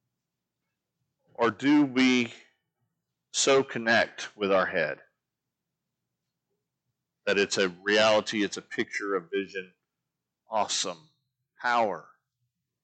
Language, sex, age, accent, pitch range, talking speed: English, male, 40-59, American, 100-125 Hz, 90 wpm